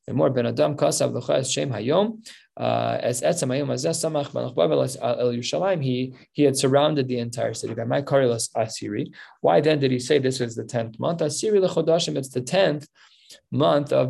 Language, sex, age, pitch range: English, male, 20-39, 130-165 Hz